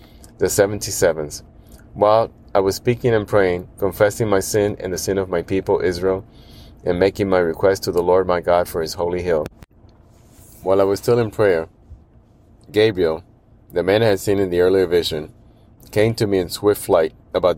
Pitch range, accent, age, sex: 90-110 Hz, American, 30-49, male